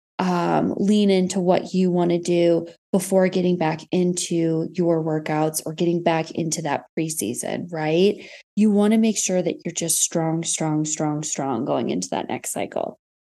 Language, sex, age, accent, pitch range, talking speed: English, female, 20-39, American, 175-220 Hz, 170 wpm